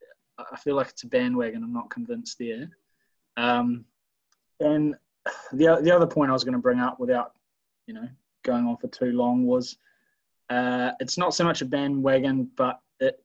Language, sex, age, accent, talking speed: English, male, 20-39, Australian, 180 wpm